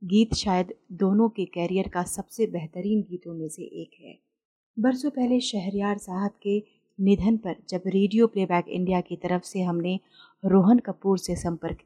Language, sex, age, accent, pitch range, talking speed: Hindi, female, 30-49, native, 180-215 Hz, 160 wpm